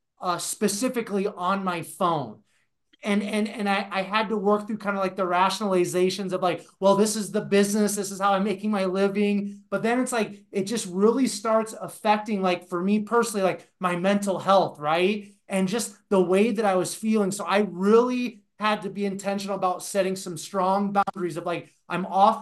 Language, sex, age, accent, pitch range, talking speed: English, male, 30-49, American, 190-215 Hz, 200 wpm